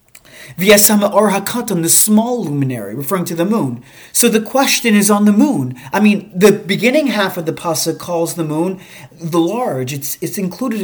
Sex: male